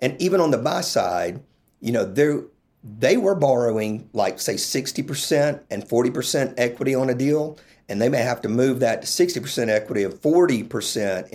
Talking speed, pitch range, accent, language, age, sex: 170 wpm, 110-140 Hz, American, English, 50-69, male